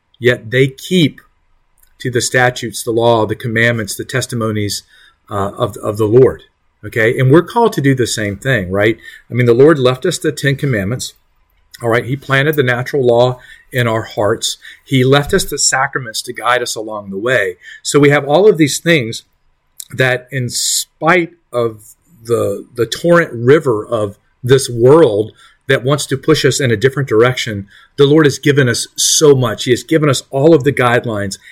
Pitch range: 115-145 Hz